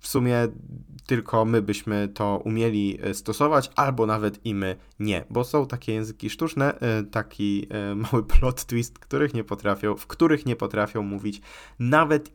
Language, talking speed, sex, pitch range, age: Polish, 155 wpm, male, 105-145 Hz, 20-39